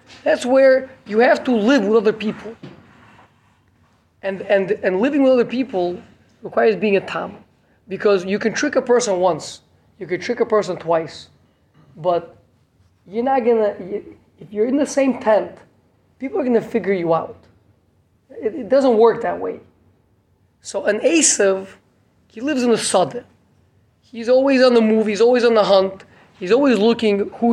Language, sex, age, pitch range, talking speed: English, male, 20-39, 165-240 Hz, 175 wpm